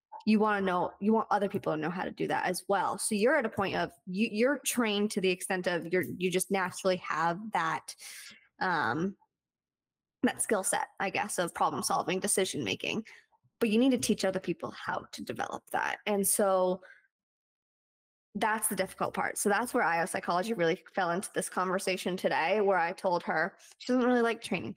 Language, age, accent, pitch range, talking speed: English, 20-39, American, 185-220 Hz, 200 wpm